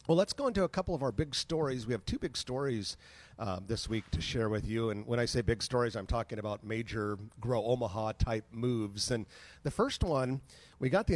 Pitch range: 110-130 Hz